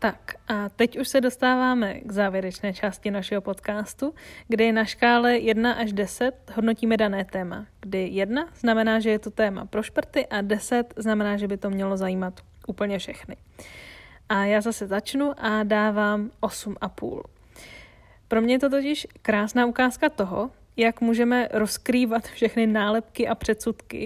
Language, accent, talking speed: Czech, native, 150 wpm